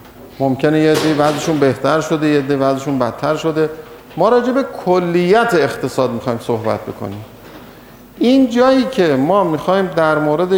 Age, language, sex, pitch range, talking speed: 50-69, Persian, male, 140-190 Hz, 135 wpm